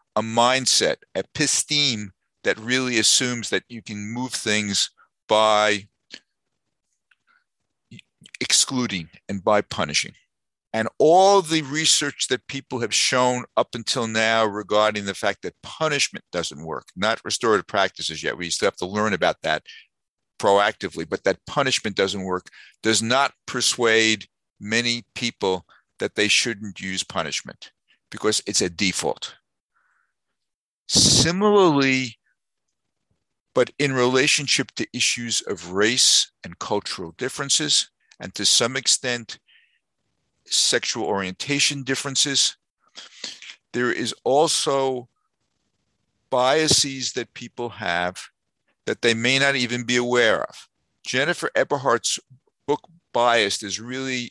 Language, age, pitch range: English, 50-69, 110-135 Hz